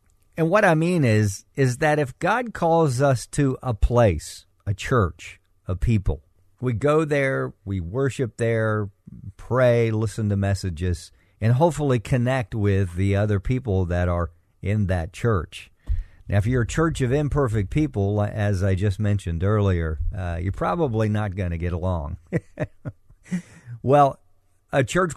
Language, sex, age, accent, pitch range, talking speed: English, male, 50-69, American, 95-125 Hz, 155 wpm